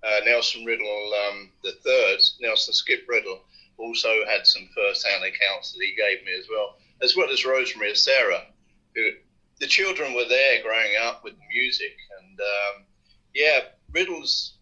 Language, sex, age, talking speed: English, male, 40-59, 160 wpm